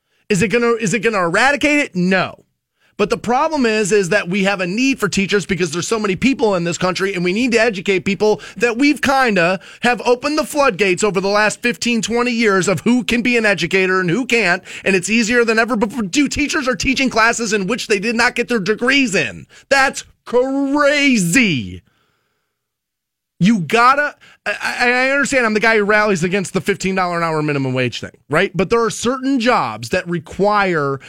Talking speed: 200 wpm